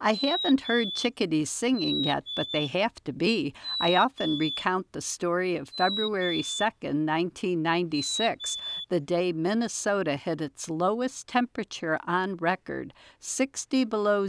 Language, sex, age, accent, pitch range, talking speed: English, female, 60-79, American, 160-220 Hz, 130 wpm